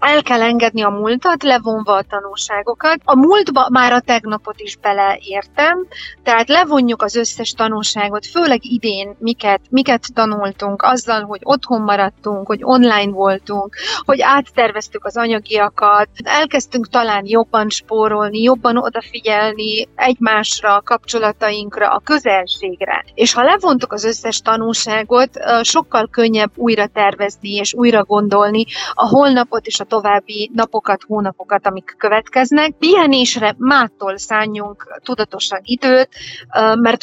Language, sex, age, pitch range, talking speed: Hungarian, female, 30-49, 210-245 Hz, 120 wpm